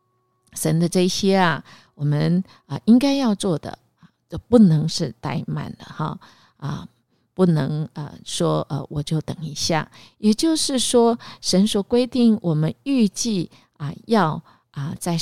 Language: Chinese